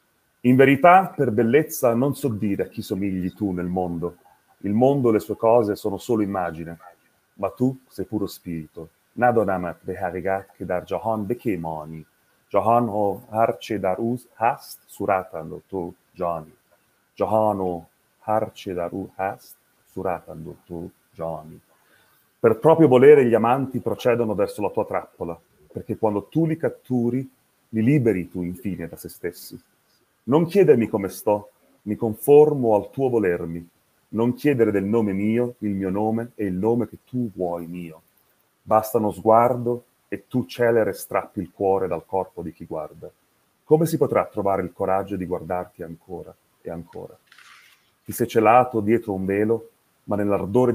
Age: 30-49